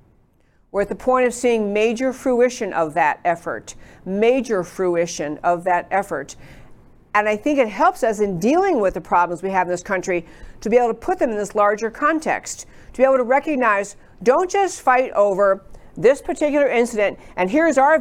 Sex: female